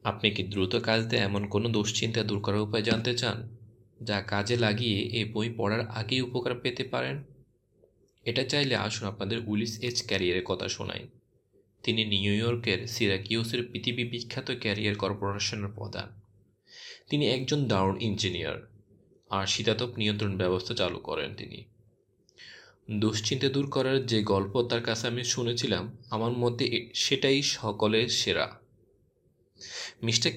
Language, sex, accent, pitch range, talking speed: Bengali, male, native, 105-120 Hz, 130 wpm